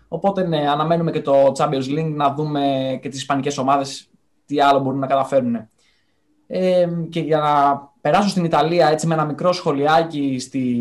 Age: 20-39